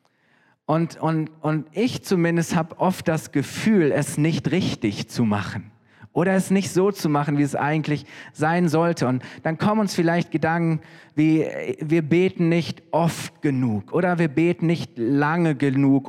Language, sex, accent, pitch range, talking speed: German, male, German, 145-170 Hz, 160 wpm